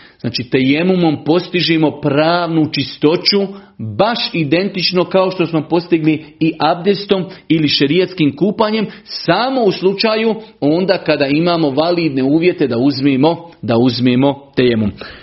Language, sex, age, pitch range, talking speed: Croatian, male, 40-59, 135-170 Hz, 115 wpm